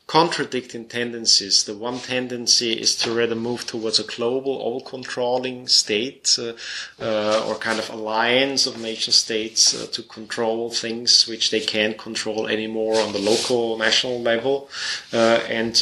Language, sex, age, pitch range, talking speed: English, male, 30-49, 110-130 Hz, 150 wpm